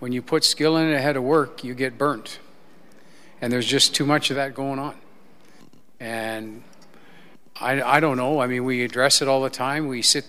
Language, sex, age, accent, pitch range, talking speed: English, male, 50-69, American, 125-150 Hz, 205 wpm